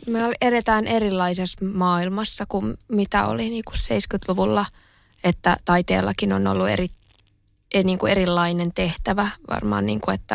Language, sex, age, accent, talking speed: Finnish, female, 20-39, native, 135 wpm